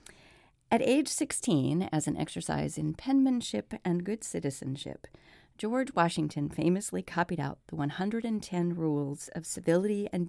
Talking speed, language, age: 130 wpm, English, 40-59